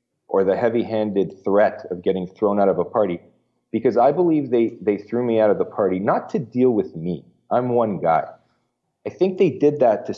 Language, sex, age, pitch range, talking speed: English, male, 30-49, 95-125 Hz, 220 wpm